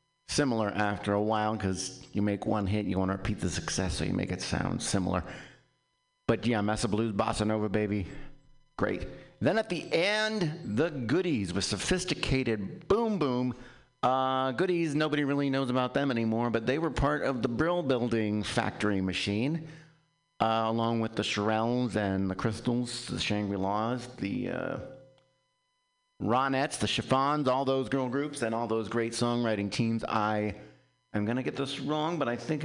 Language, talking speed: English, 170 wpm